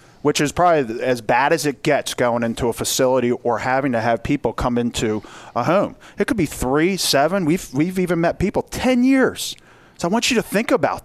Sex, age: male, 40-59